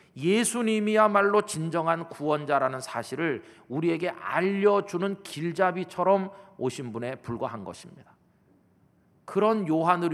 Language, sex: Korean, male